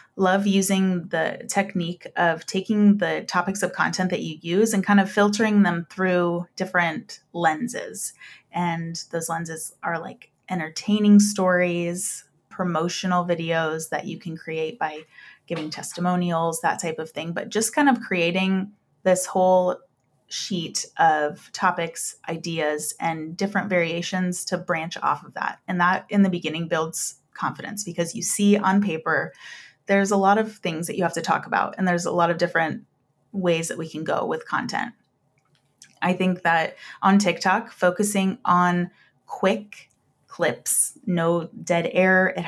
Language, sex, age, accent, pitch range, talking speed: English, female, 30-49, American, 165-195 Hz, 155 wpm